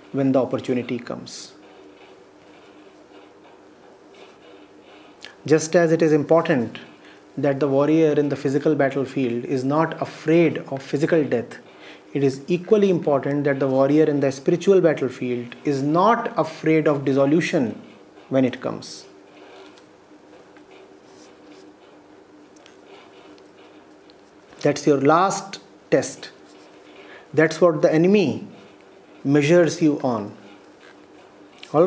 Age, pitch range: 30-49, 145-205 Hz